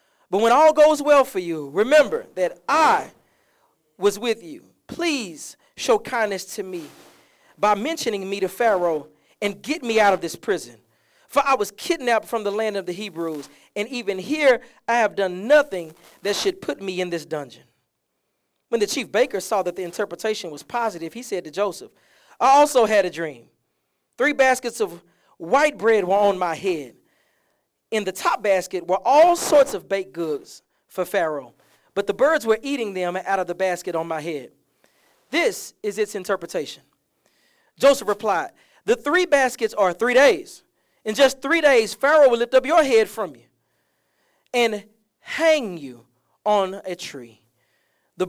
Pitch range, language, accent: 185-260 Hz, English, American